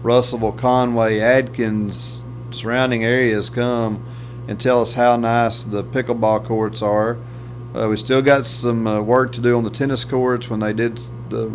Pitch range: 115-120 Hz